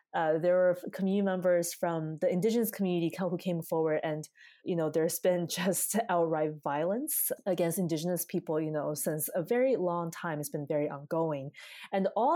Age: 20-39